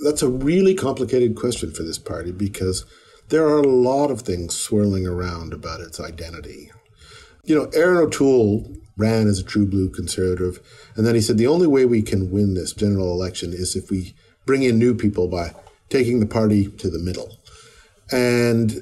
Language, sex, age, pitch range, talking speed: English, male, 50-69, 95-125 Hz, 185 wpm